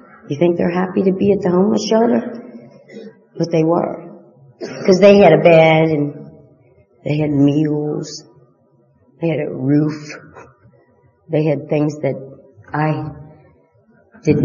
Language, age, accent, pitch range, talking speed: English, 40-59, American, 140-170 Hz, 135 wpm